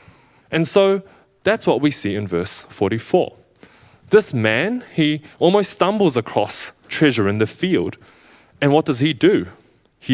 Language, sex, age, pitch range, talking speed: English, male, 20-39, 105-150 Hz, 150 wpm